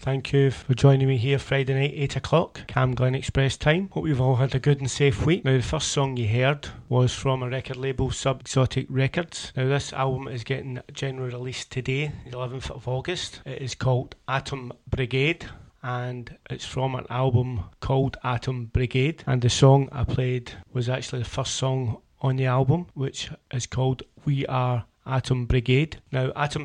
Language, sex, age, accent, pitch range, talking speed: English, male, 30-49, British, 125-135 Hz, 190 wpm